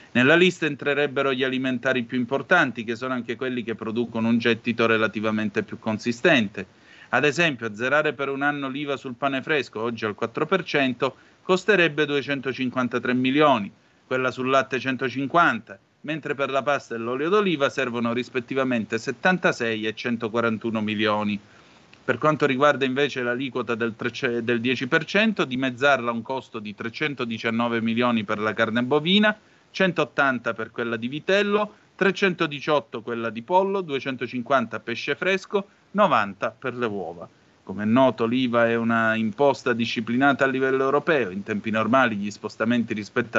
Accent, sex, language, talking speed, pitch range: native, male, Italian, 140 wpm, 115-140 Hz